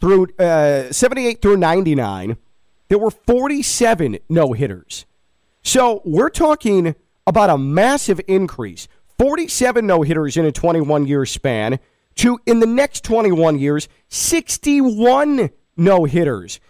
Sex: male